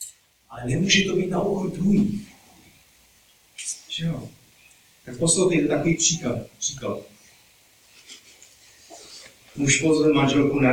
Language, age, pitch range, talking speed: Czech, 30-49, 115-145 Hz, 95 wpm